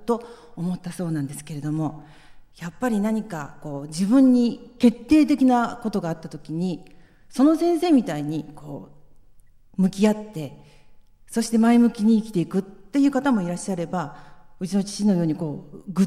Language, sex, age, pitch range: Japanese, female, 40-59, 155-215 Hz